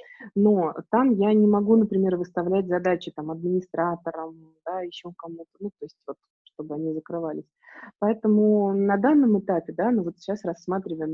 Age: 20-39